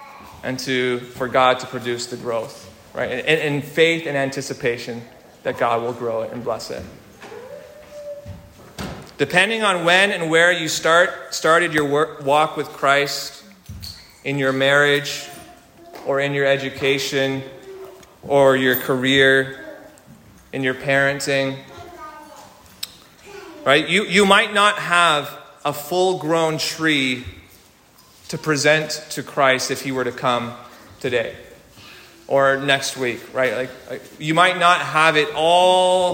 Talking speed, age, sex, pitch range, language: 130 wpm, 30-49, male, 135-170 Hz, English